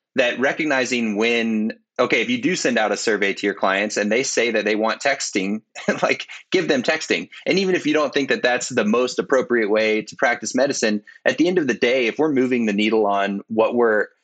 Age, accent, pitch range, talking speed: 20-39, American, 105-115 Hz, 230 wpm